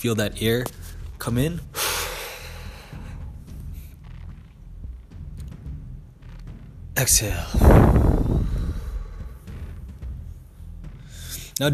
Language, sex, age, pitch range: English, male, 20-39, 85-130 Hz